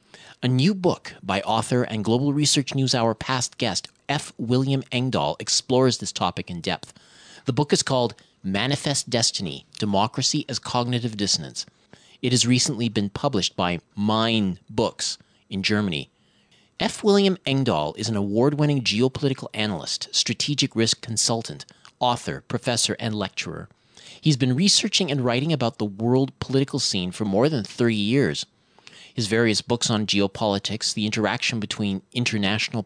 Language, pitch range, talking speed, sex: English, 105-135 Hz, 145 wpm, male